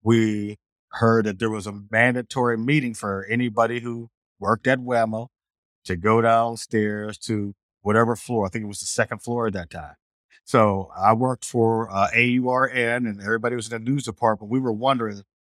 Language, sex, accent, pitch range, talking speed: English, male, American, 100-120 Hz, 180 wpm